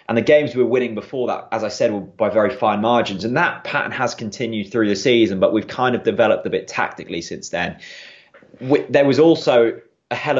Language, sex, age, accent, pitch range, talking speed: English, male, 20-39, British, 95-115 Hz, 225 wpm